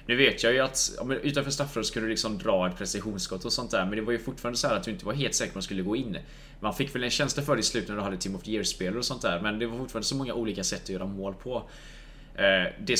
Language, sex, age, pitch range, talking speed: Swedish, male, 20-39, 115-150 Hz, 300 wpm